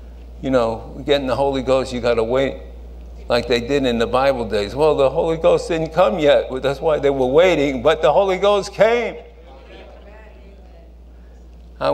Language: English